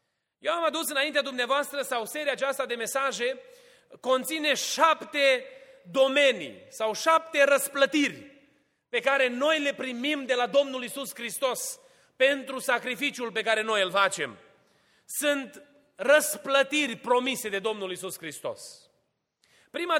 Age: 30-49